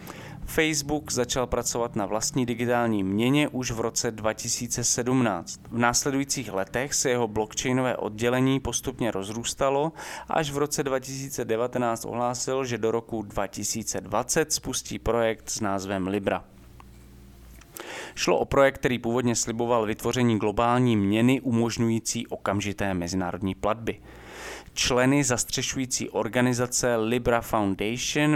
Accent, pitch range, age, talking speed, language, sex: Czech, 105-130 Hz, 30-49, 110 wpm, English, male